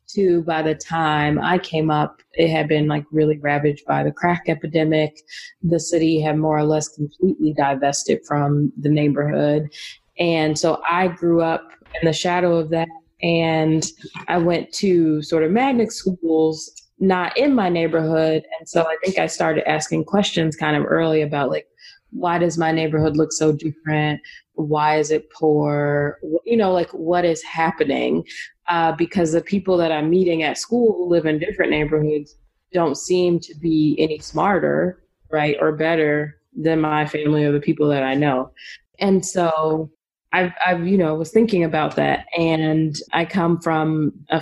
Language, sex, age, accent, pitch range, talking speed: English, female, 20-39, American, 155-175 Hz, 170 wpm